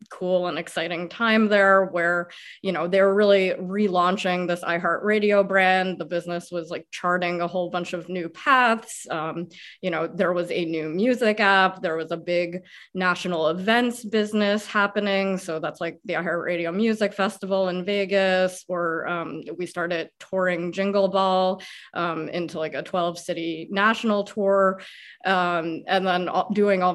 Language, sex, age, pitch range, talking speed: English, female, 20-39, 175-210 Hz, 155 wpm